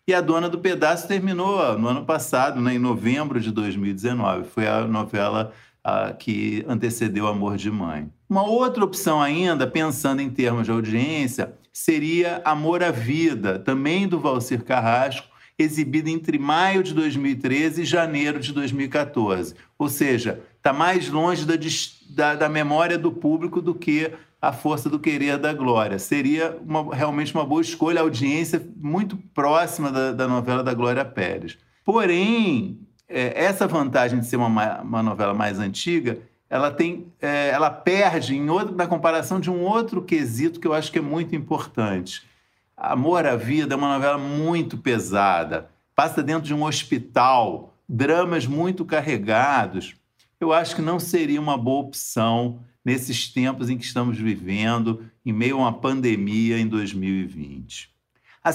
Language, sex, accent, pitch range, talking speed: Portuguese, male, Brazilian, 120-165 Hz, 150 wpm